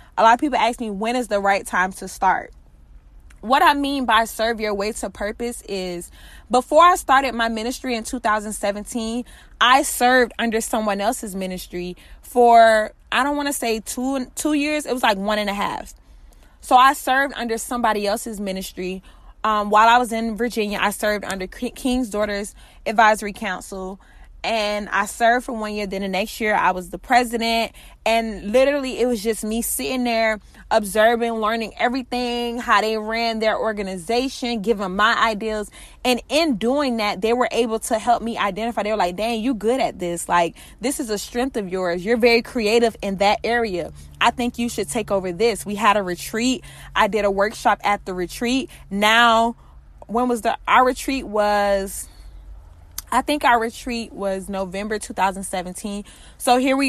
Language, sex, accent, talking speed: English, female, American, 180 wpm